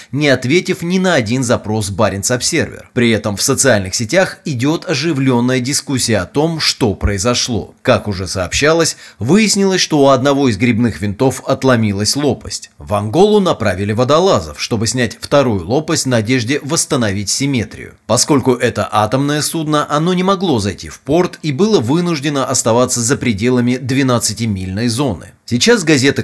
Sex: male